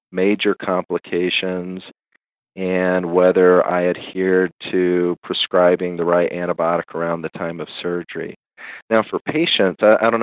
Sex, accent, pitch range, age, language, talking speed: male, American, 90-100 Hz, 40-59, English, 125 wpm